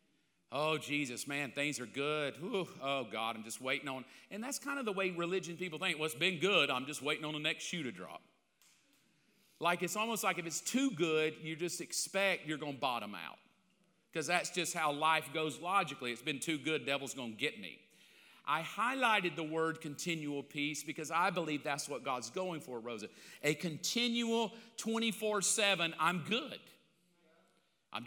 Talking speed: 185 wpm